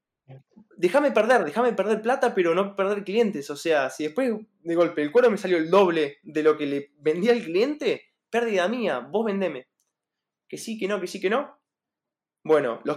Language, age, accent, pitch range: Spanish, 20-39, Argentinian, 175-230 Hz